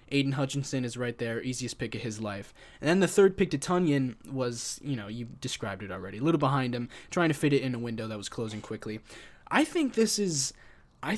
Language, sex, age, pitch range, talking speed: English, male, 20-39, 115-150 Hz, 235 wpm